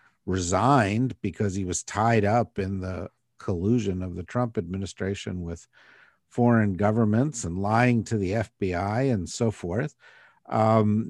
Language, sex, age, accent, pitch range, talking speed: English, male, 50-69, American, 95-115 Hz, 135 wpm